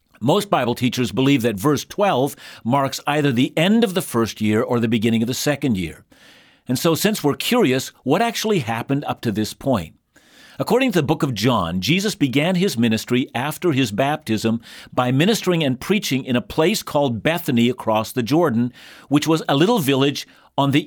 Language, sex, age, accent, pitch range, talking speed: English, male, 50-69, American, 120-160 Hz, 190 wpm